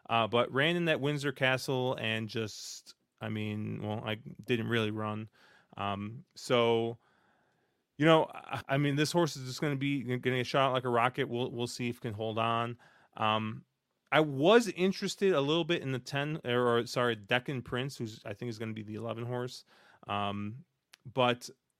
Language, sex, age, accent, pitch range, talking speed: English, male, 30-49, American, 110-135 Hz, 195 wpm